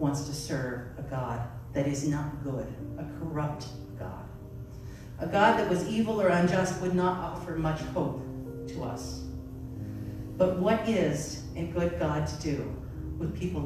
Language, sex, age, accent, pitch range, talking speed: English, female, 50-69, American, 125-185 Hz, 160 wpm